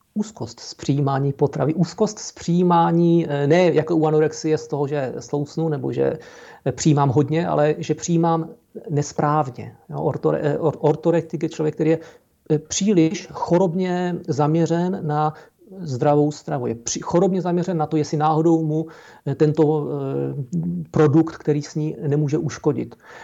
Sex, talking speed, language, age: male, 130 wpm, Czech, 40-59